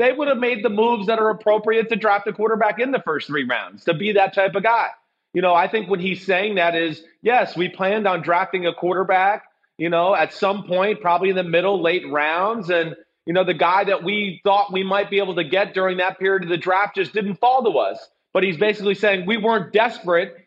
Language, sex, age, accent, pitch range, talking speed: English, male, 30-49, American, 175-215 Hz, 245 wpm